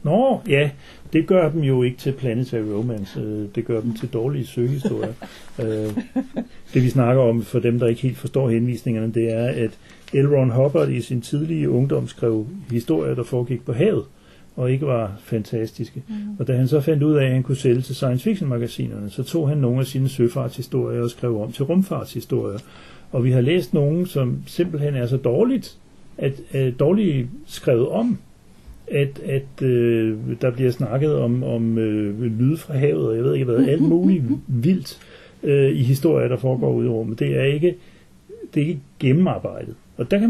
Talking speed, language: 180 wpm, Danish